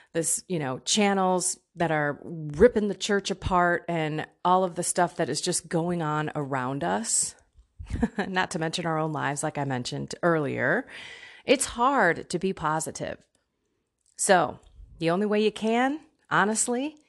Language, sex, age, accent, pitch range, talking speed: English, female, 30-49, American, 155-225 Hz, 155 wpm